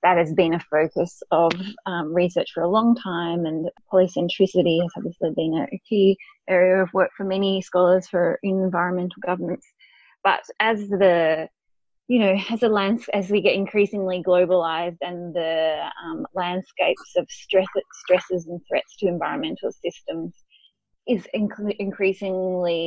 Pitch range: 175-200 Hz